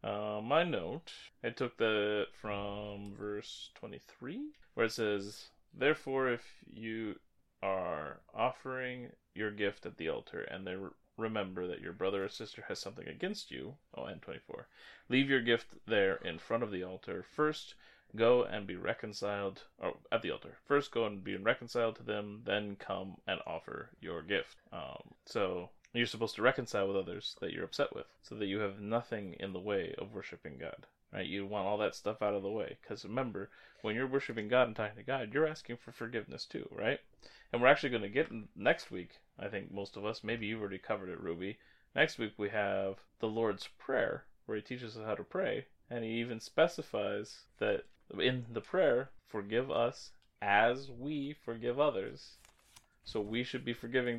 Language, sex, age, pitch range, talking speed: English, male, 20-39, 100-120 Hz, 190 wpm